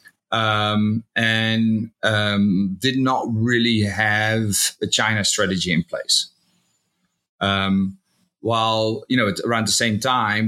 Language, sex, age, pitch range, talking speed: English, male, 30-49, 100-115 Hz, 120 wpm